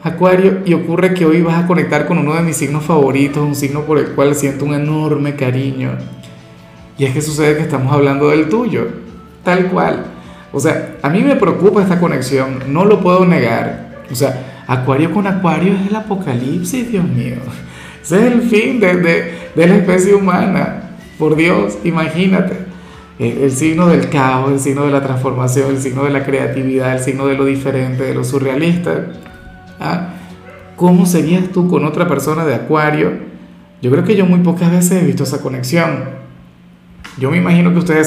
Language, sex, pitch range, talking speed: Spanish, male, 135-180 Hz, 185 wpm